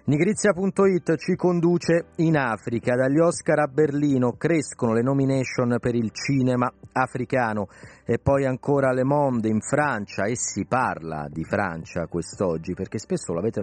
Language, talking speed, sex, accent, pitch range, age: Italian, 140 wpm, male, native, 100-145 Hz, 30-49